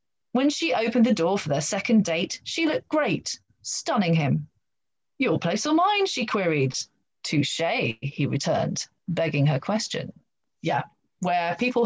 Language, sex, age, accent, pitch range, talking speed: English, female, 30-49, British, 165-215 Hz, 145 wpm